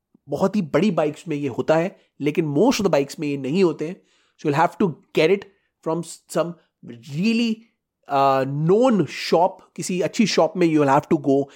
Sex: male